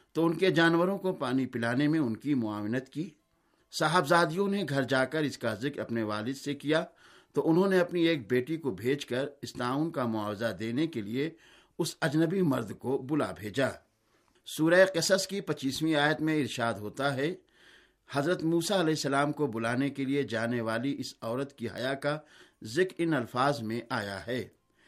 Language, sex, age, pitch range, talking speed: Urdu, male, 60-79, 125-165 Hz, 180 wpm